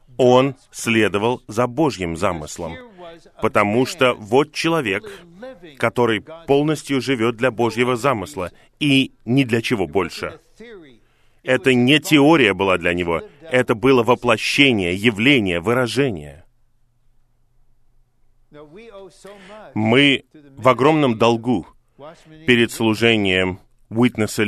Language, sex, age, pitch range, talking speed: Russian, male, 30-49, 110-135 Hz, 95 wpm